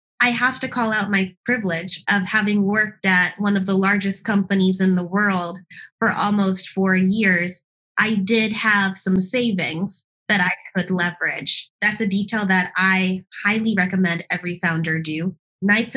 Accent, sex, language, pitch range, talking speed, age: American, female, English, 190-225 Hz, 160 wpm, 20-39